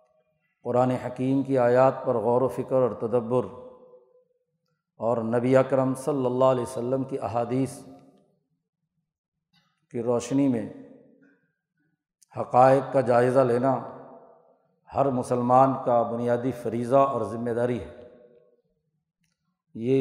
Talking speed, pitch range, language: 110 wpm, 125-150 Hz, Urdu